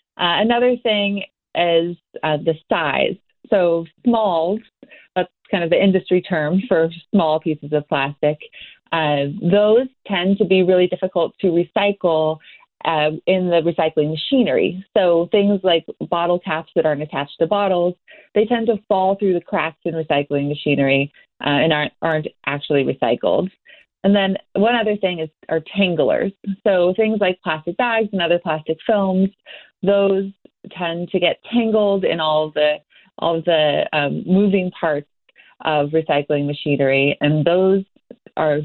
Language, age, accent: English, 30-49, American